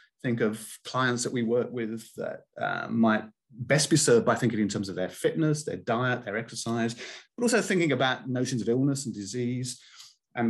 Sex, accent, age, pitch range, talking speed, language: male, British, 30-49, 110-140 Hz, 195 wpm, English